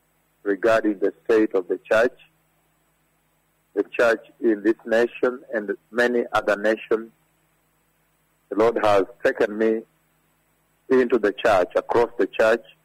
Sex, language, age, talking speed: male, English, 50-69, 120 wpm